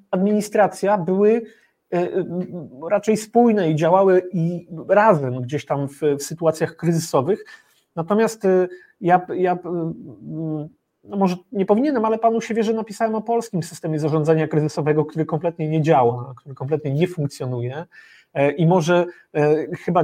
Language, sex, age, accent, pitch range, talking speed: Polish, male, 30-49, native, 160-215 Hz, 125 wpm